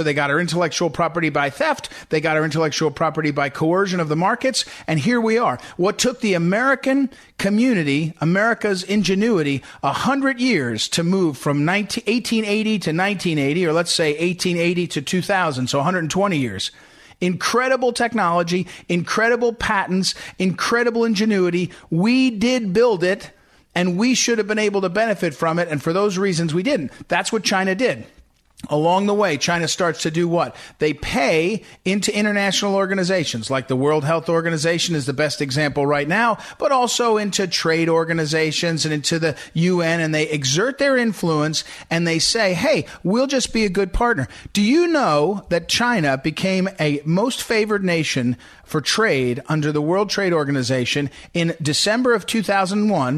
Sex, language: male, English